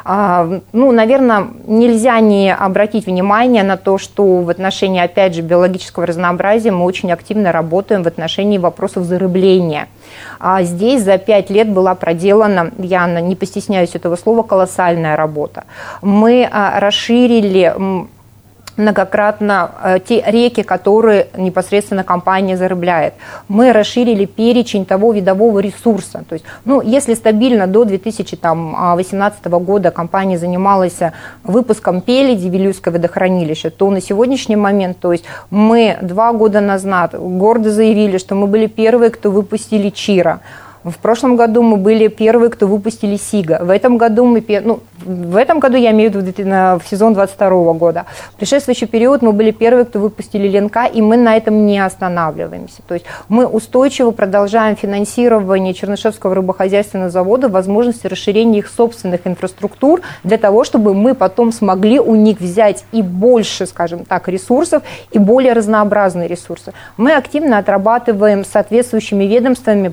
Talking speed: 135 wpm